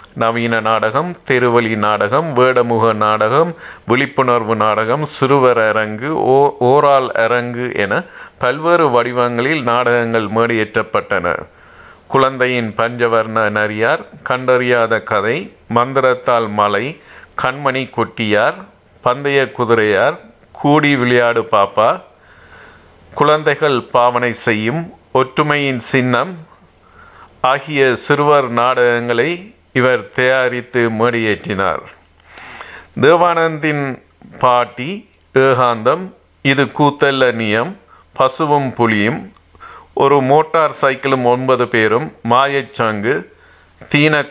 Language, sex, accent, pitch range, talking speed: Tamil, male, native, 115-140 Hz, 80 wpm